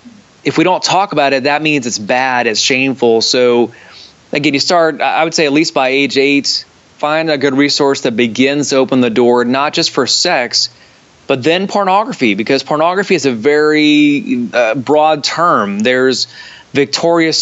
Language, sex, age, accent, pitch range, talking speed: English, male, 20-39, American, 125-155 Hz, 175 wpm